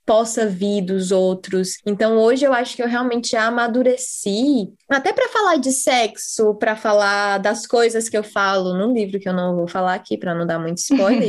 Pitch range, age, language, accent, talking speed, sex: 200-290 Hz, 20-39, Portuguese, Brazilian, 200 wpm, female